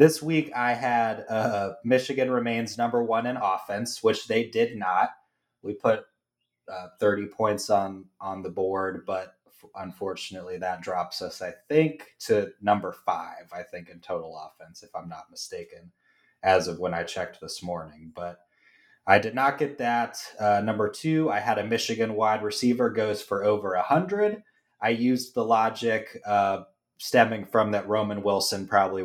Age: 20-39